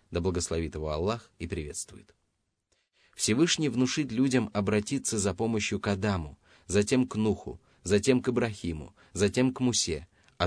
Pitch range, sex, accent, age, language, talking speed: 90-115 Hz, male, native, 30-49, Russian, 140 wpm